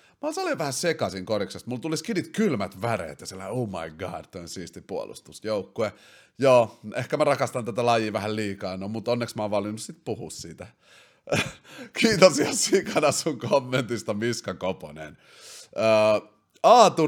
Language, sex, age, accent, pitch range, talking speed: Finnish, male, 30-49, native, 100-140 Hz, 160 wpm